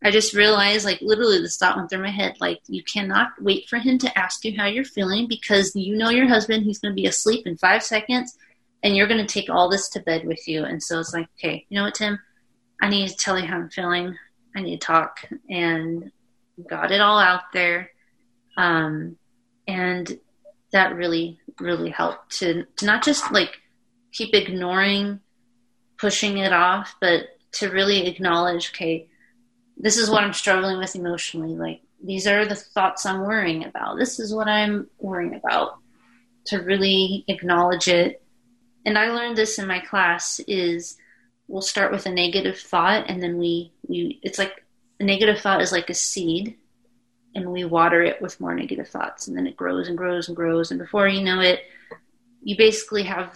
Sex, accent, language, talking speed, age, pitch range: female, American, English, 190 wpm, 30-49, 175-220 Hz